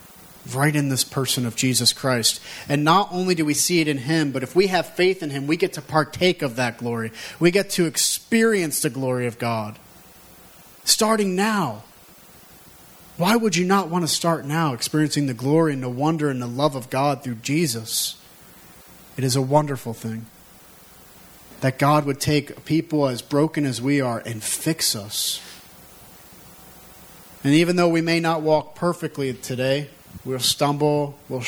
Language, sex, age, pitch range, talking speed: English, male, 40-59, 125-160 Hz, 175 wpm